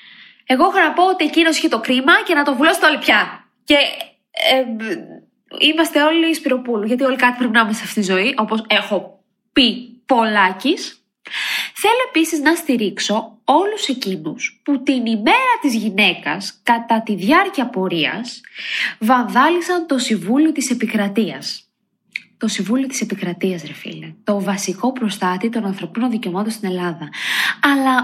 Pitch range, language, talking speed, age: 210-300 Hz, Greek, 150 wpm, 20-39